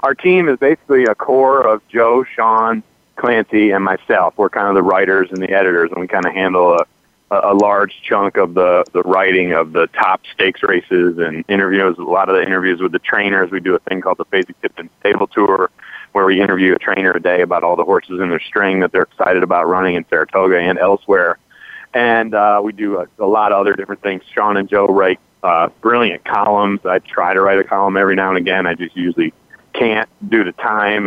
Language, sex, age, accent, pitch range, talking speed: English, male, 30-49, American, 95-110 Hz, 225 wpm